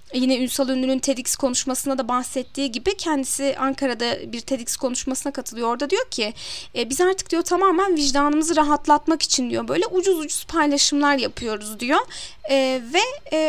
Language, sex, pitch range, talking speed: Turkish, female, 255-325 Hz, 155 wpm